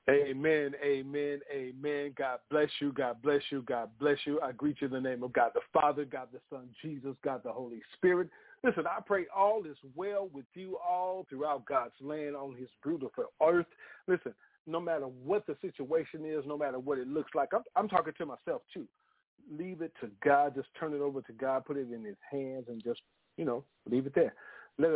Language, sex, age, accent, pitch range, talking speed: English, male, 40-59, American, 120-150 Hz, 210 wpm